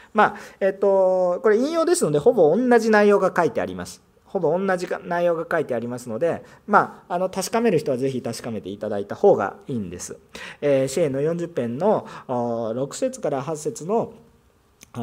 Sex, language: male, Japanese